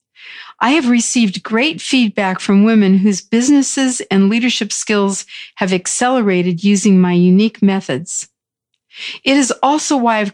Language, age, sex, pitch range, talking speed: English, 50-69, female, 195-245 Hz, 135 wpm